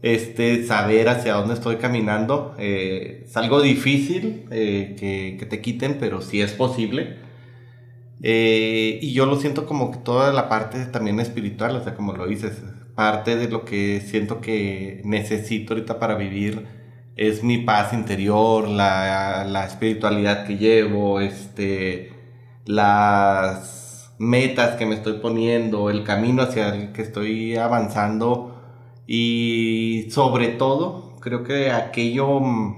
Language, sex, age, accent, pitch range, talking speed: Spanish, male, 30-49, Mexican, 110-125 Hz, 135 wpm